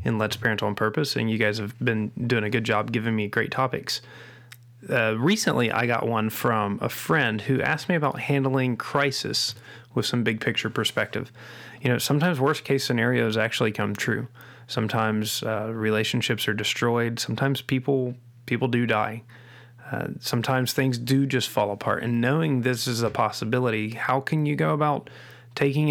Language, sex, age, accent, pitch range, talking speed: English, male, 20-39, American, 115-130 Hz, 170 wpm